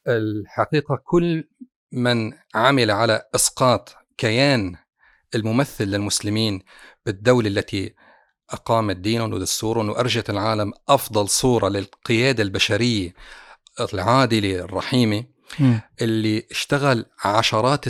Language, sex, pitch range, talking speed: Arabic, male, 110-130 Hz, 85 wpm